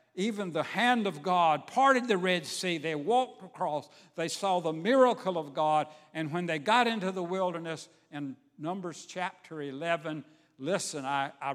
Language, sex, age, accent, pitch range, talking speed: English, male, 60-79, American, 150-200 Hz, 165 wpm